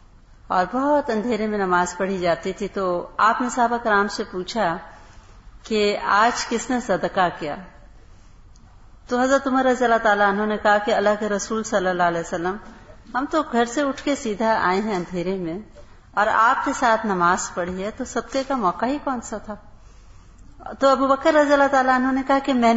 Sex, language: female, Urdu